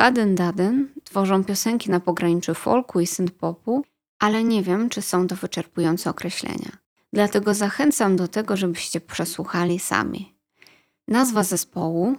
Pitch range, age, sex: 175-210 Hz, 20-39, female